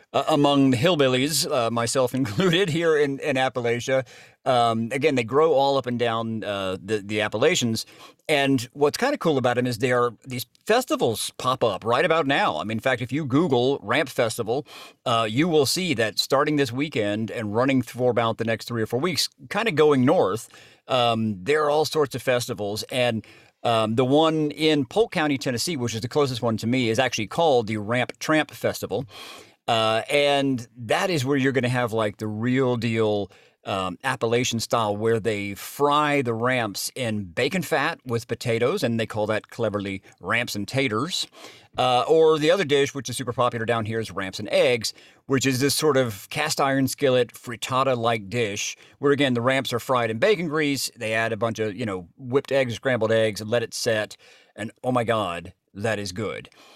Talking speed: 200 wpm